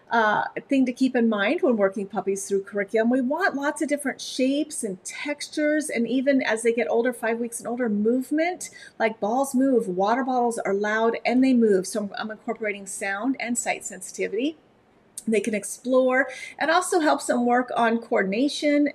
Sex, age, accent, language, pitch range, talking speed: female, 40-59, American, English, 205-255 Hz, 185 wpm